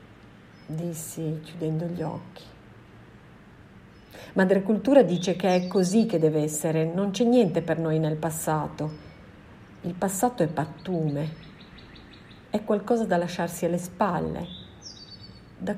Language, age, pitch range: Italian, 50-69, 160-205 Hz